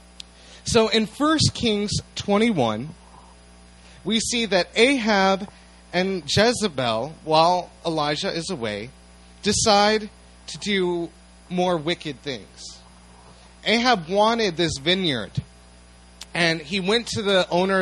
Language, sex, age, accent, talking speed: English, male, 30-49, American, 105 wpm